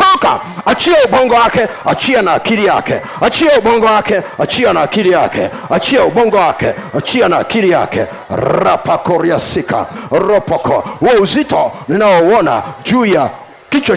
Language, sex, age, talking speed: Swahili, male, 50-69, 135 wpm